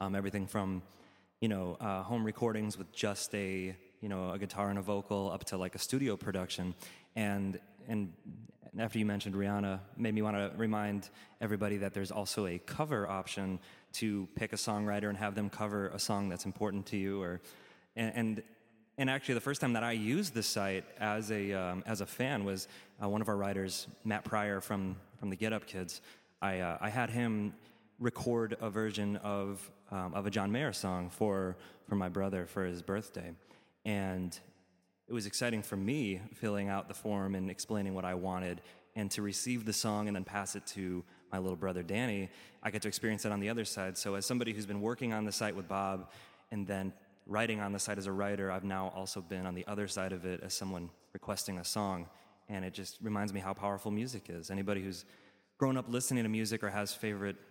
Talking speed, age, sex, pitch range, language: 210 wpm, 20-39, male, 95-105 Hz, English